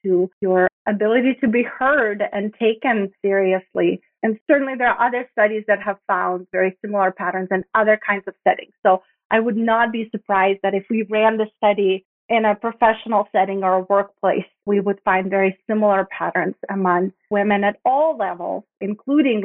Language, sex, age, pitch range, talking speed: English, female, 30-49, 200-250 Hz, 175 wpm